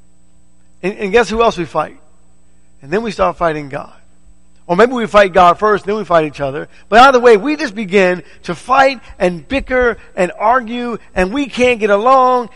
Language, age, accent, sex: English, 50-69, American, male